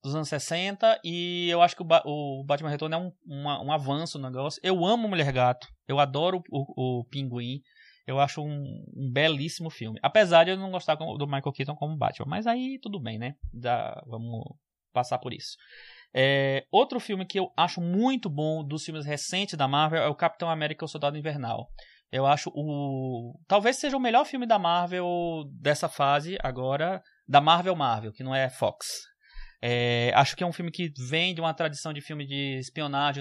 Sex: male